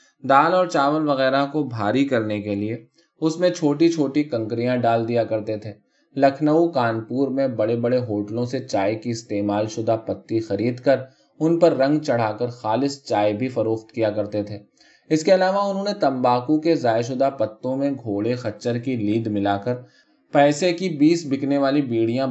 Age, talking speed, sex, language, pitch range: 20-39, 180 wpm, male, Urdu, 110-150 Hz